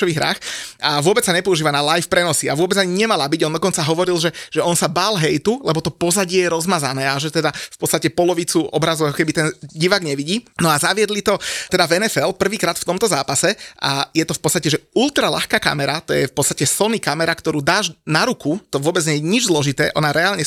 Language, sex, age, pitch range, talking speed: Slovak, male, 30-49, 150-185 Hz, 225 wpm